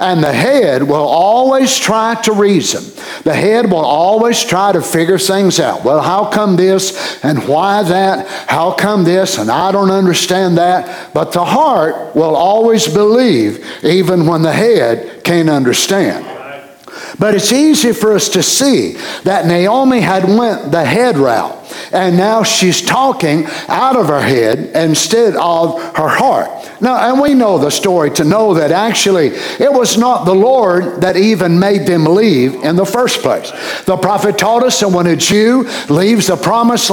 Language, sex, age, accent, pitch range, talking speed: English, male, 60-79, American, 175-225 Hz, 170 wpm